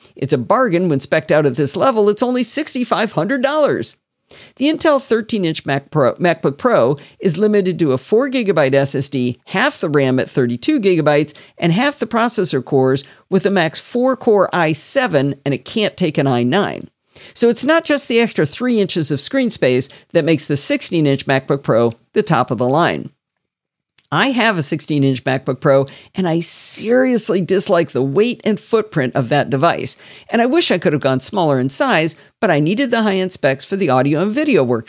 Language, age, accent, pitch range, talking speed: English, 50-69, American, 140-235 Hz, 185 wpm